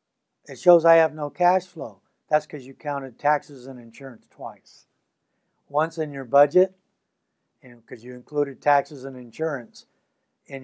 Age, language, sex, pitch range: 60-79, English, male, 125-160 Hz